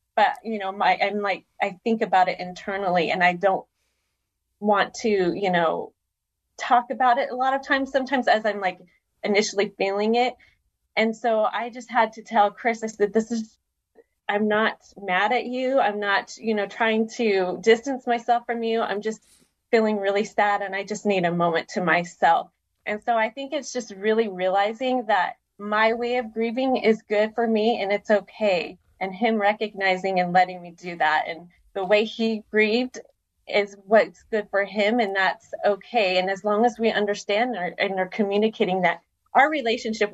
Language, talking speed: English, 185 wpm